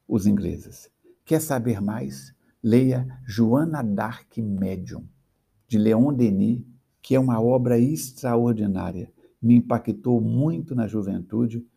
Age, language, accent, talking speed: 60-79, Portuguese, Brazilian, 110 wpm